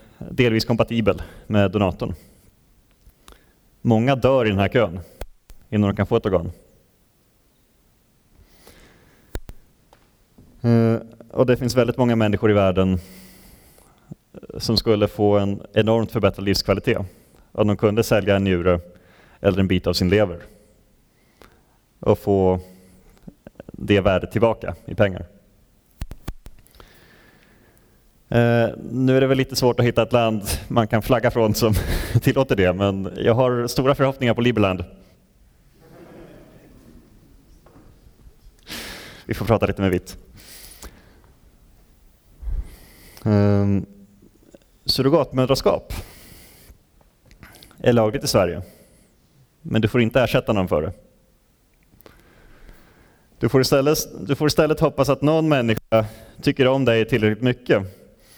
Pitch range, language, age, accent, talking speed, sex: 100-125 Hz, Swedish, 30-49, native, 110 wpm, male